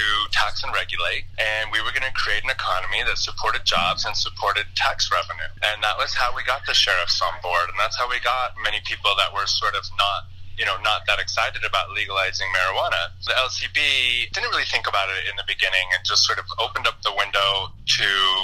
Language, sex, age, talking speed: English, male, 30-49, 220 wpm